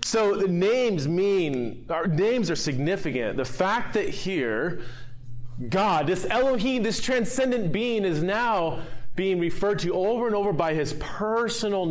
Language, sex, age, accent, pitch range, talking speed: English, male, 30-49, American, 135-200 Hz, 140 wpm